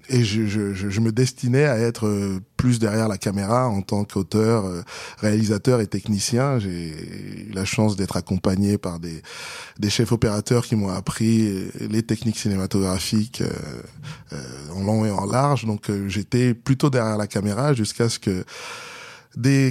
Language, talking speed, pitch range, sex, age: French, 160 wpm, 100-125 Hz, male, 20-39